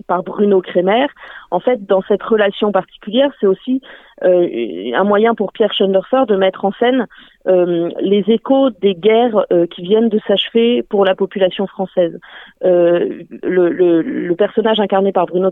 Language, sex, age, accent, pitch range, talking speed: French, female, 30-49, French, 175-225 Hz, 165 wpm